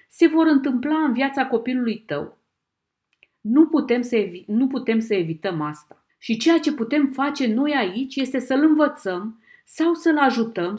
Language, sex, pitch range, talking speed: Romanian, female, 195-280 Hz, 145 wpm